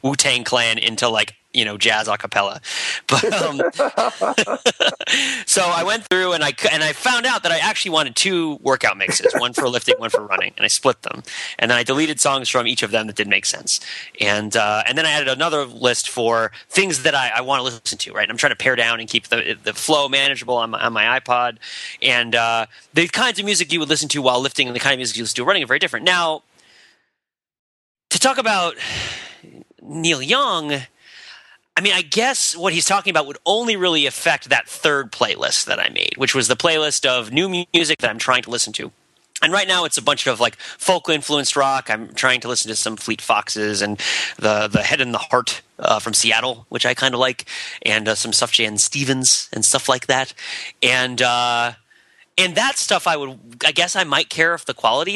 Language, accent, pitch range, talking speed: English, American, 115-165 Hz, 225 wpm